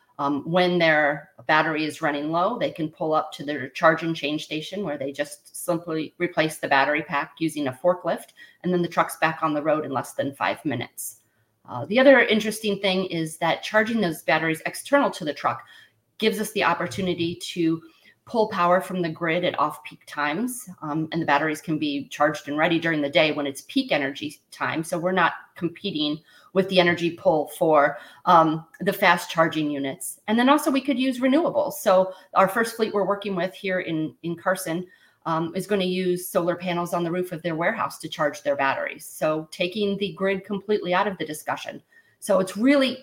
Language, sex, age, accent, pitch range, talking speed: English, female, 30-49, American, 155-195 Hz, 200 wpm